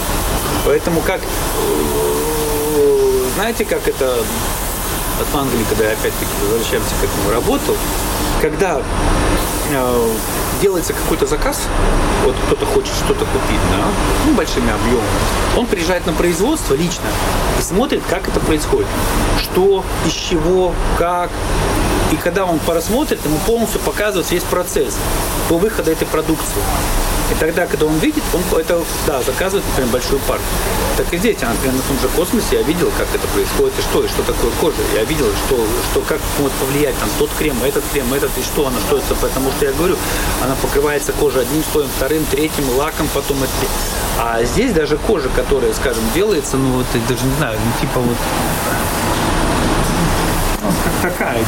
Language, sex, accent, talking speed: Russian, male, native, 160 wpm